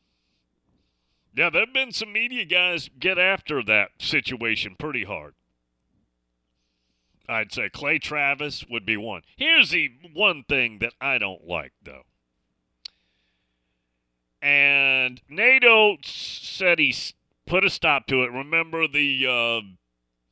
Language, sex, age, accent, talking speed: English, male, 40-59, American, 120 wpm